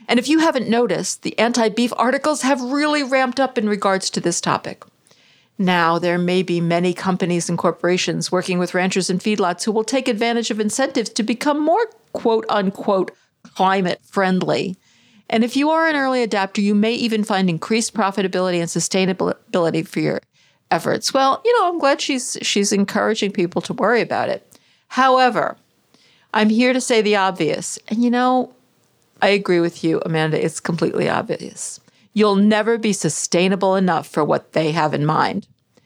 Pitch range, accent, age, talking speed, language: 185-240 Hz, American, 50-69, 170 wpm, English